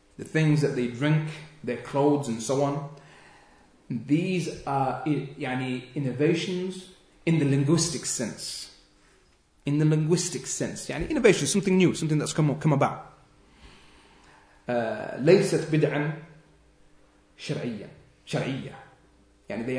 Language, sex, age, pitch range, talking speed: English, male, 30-49, 130-155 Hz, 105 wpm